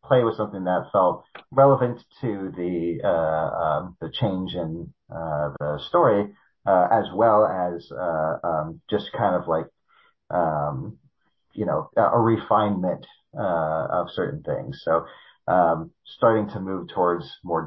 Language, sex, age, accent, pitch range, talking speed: English, male, 30-49, American, 85-115 Hz, 145 wpm